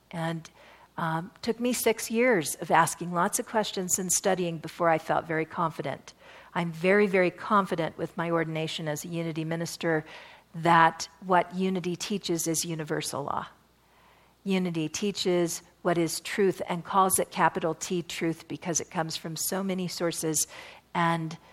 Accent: American